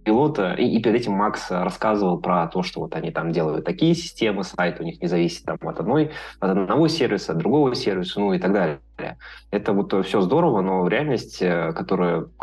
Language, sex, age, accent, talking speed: Russian, male, 20-39, native, 185 wpm